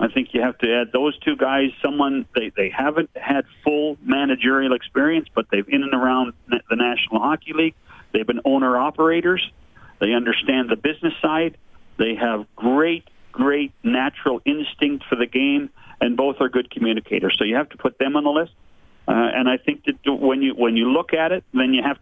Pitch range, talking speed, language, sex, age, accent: 125-150 Hz, 195 wpm, English, male, 40-59, American